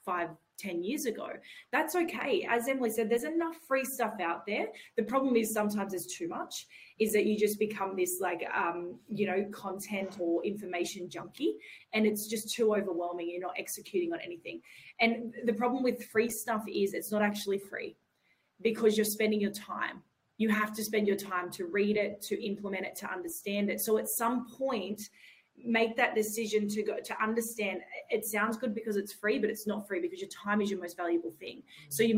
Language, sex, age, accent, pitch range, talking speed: English, female, 20-39, Australian, 190-225 Hz, 200 wpm